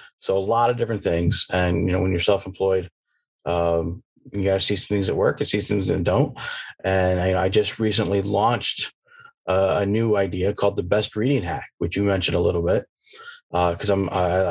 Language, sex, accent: English, male, American